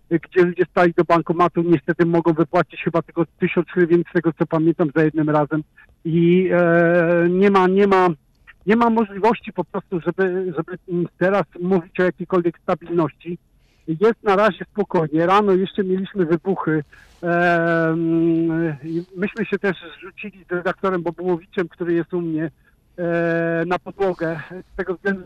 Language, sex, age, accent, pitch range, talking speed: Polish, male, 50-69, native, 165-185 Hz, 145 wpm